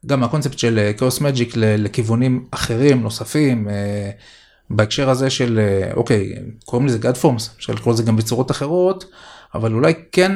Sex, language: male, Hebrew